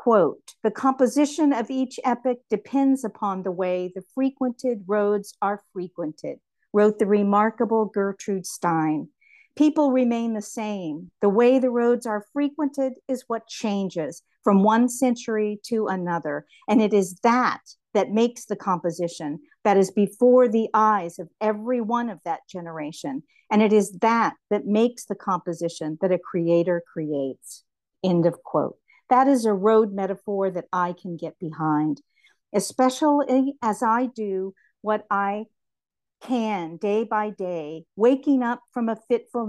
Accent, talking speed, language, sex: American, 145 wpm, English, female